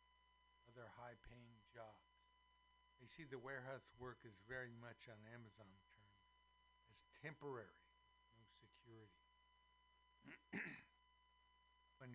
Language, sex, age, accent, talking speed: English, male, 60-79, American, 100 wpm